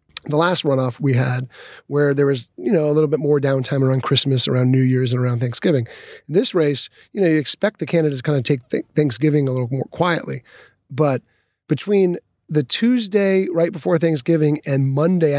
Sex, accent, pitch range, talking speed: male, American, 135-170 Hz, 195 wpm